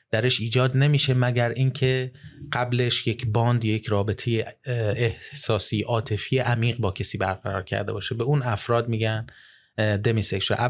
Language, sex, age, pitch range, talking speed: Persian, male, 30-49, 105-130 Hz, 130 wpm